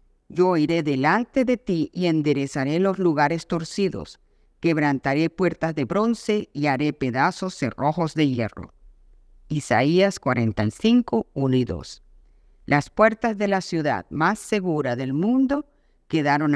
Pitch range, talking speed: 135-195 Hz, 125 wpm